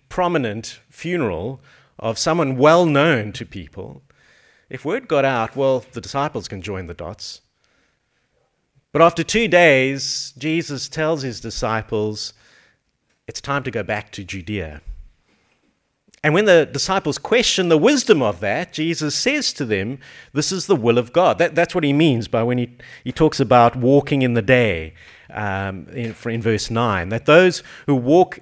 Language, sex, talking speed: English, male, 160 wpm